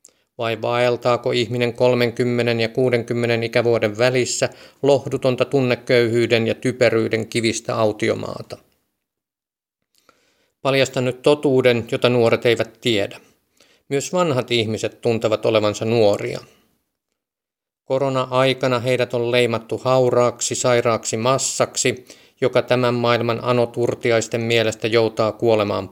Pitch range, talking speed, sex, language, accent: 115-125 Hz, 95 wpm, male, Finnish, native